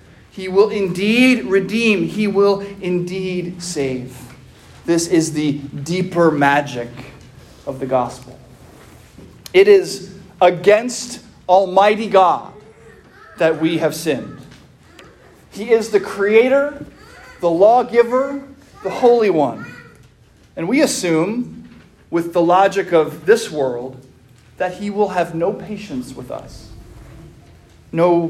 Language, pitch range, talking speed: English, 165-235 Hz, 110 wpm